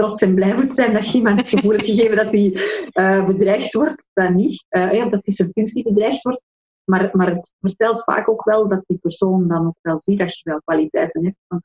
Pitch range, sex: 180-215 Hz, female